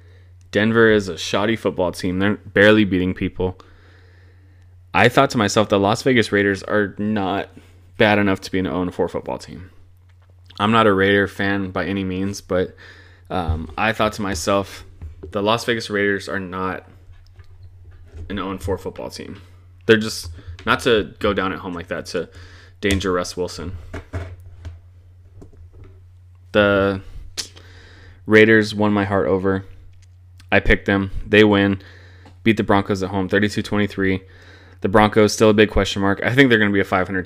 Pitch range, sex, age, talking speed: 90-105 Hz, male, 20-39, 160 wpm